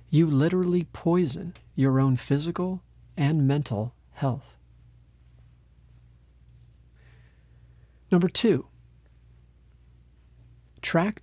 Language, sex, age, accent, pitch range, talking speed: English, male, 40-59, American, 100-150 Hz, 65 wpm